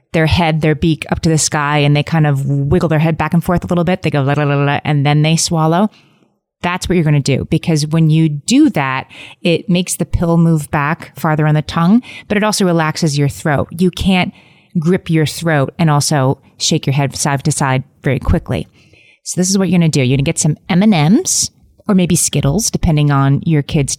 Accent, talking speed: American, 240 wpm